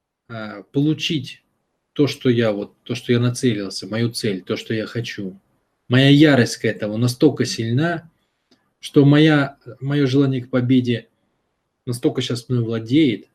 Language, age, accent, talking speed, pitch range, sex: Russian, 20-39, native, 135 wpm, 115-155 Hz, male